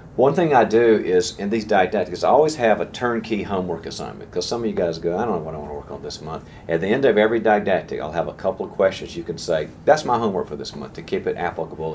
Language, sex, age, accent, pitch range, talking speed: English, male, 40-59, American, 85-115 Hz, 285 wpm